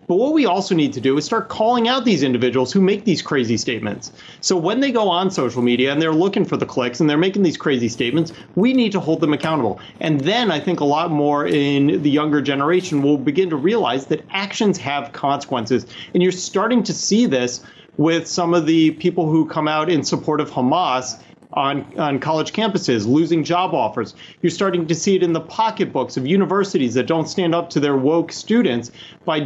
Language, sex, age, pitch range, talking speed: English, male, 30-49, 140-185 Hz, 215 wpm